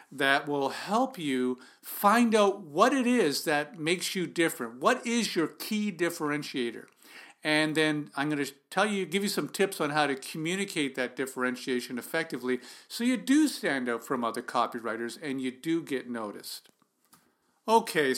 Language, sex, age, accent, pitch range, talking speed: English, male, 50-69, American, 135-200 Hz, 165 wpm